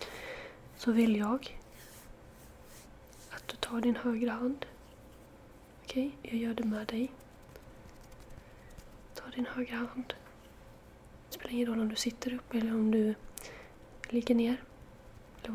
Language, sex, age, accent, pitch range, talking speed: Swedish, female, 30-49, native, 220-245 Hz, 130 wpm